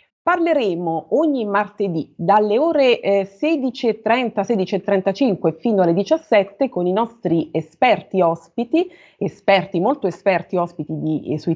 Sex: female